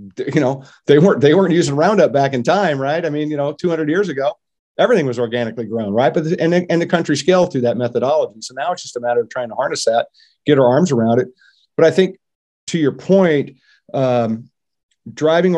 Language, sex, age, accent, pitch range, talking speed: English, male, 50-69, American, 115-150 Hz, 225 wpm